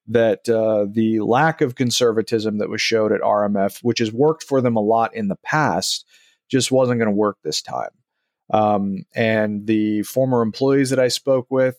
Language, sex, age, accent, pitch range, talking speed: English, male, 30-49, American, 110-125 Hz, 190 wpm